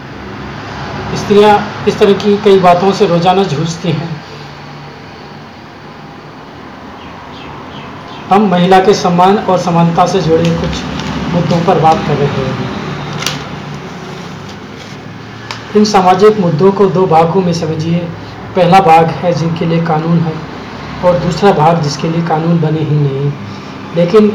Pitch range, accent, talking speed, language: 160-190 Hz, native, 115 wpm, Hindi